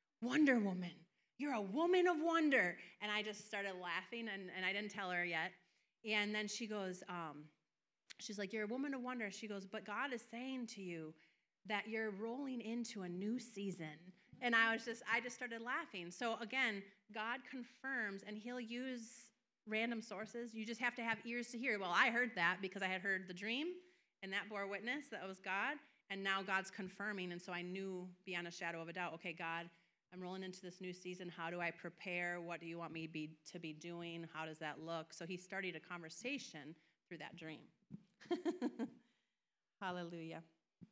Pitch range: 180-230 Hz